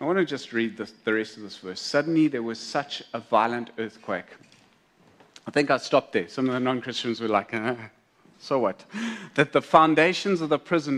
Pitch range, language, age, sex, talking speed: 115-155 Hz, English, 40-59, male, 200 wpm